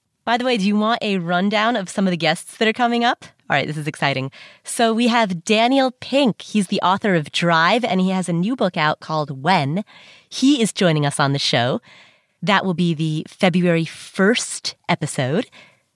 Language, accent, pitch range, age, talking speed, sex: English, American, 175-235 Hz, 30-49, 205 wpm, female